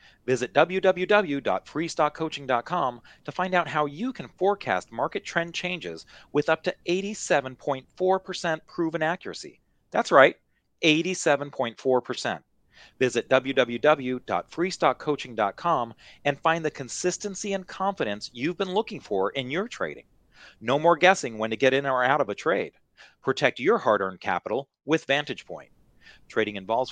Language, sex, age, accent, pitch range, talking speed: English, male, 40-59, American, 115-165 Hz, 125 wpm